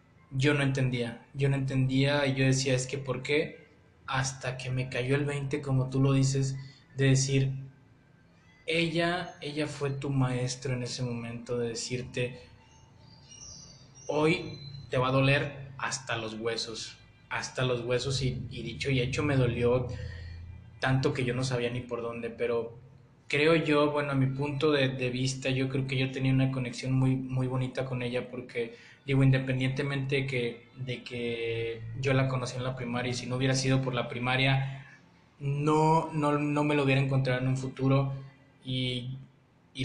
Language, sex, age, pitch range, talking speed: Spanish, male, 20-39, 120-135 Hz, 175 wpm